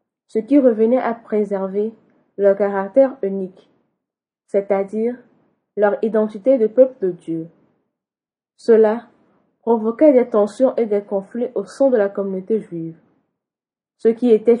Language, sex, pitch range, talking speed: French, female, 200-240 Hz, 125 wpm